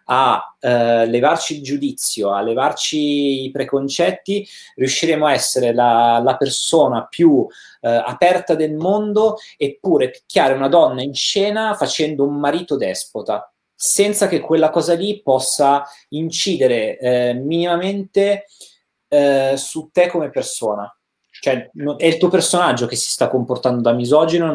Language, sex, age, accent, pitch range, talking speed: Italian, male, 30-49, native, 110-160 Hz, 135 wpm